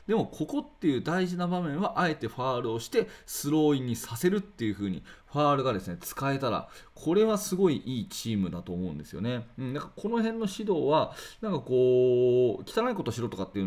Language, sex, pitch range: Japanese, male, 110-175 Hz